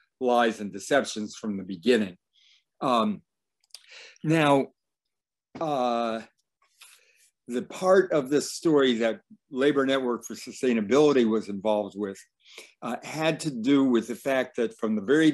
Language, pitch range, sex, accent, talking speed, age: English, 110-145 Hz, male, American, 130 wpm, 60-79